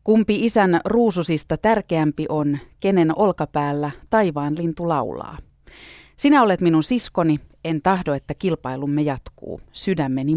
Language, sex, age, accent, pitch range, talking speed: Finnish, female, 30-49, native, 140-185 Hz, 115 wpm